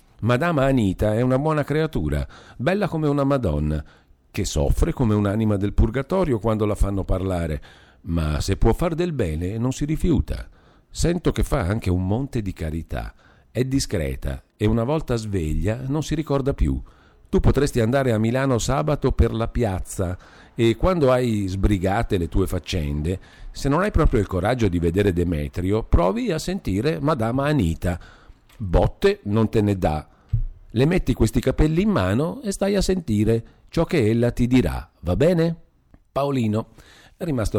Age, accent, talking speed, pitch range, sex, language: 50-69, native, 160 wpm, 85-125 Hz, male, Italian